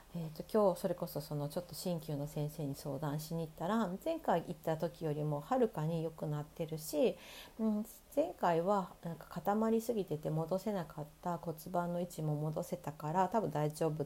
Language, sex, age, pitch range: Japanese, female, 40-59, 165-215 Hz